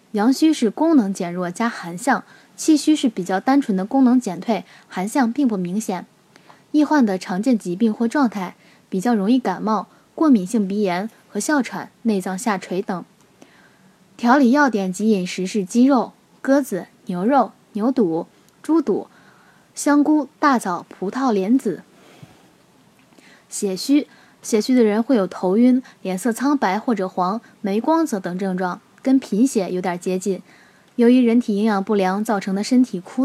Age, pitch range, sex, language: 10-29, 195-260 Hz, female, Chinese